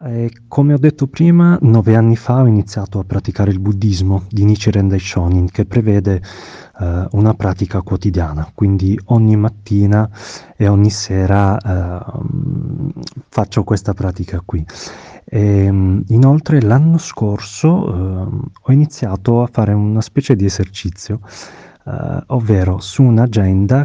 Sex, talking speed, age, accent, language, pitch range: male, 115 wpm, 30-49, native, Italian, 100-125 Hz